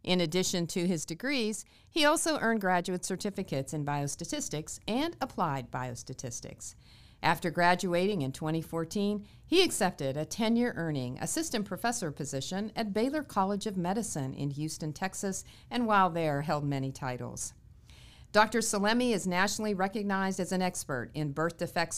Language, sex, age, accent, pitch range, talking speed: English, female, 50-69, American, 145-205 Hz, 140 wpm